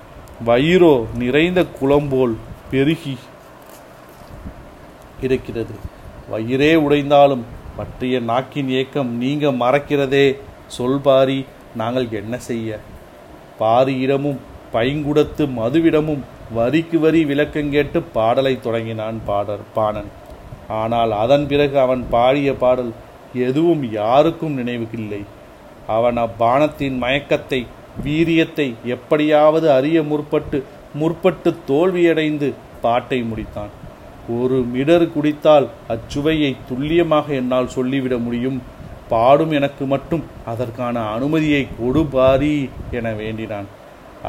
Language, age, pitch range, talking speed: Tamil, 40-59, 120-150 Hz, 85 wpm